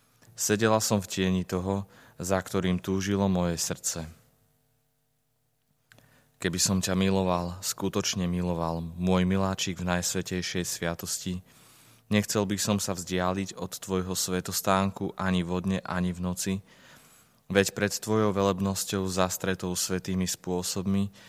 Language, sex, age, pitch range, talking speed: Slovak, male, 20-39, 90-100 Hz, 115 wpm